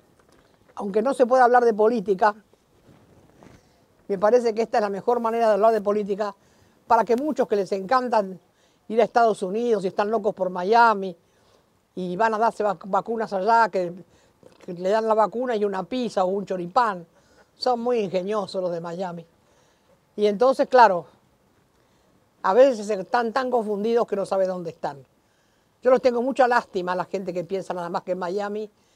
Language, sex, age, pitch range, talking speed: Spanish, female, 50-69, 185-235 Hz, 180 wpm